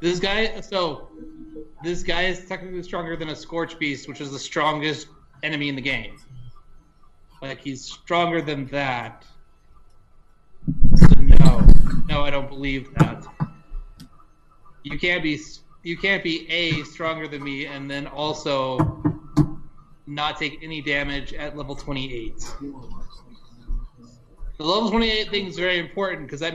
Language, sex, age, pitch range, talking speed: English, male, 20-39, 145-175 Hz, 140 wpm